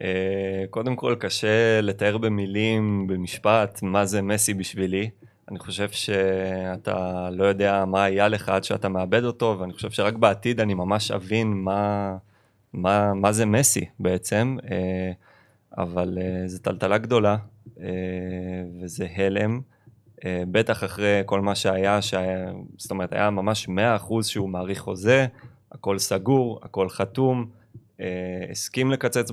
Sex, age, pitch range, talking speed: male, 20-39, 95-110 Hz, 135 wpm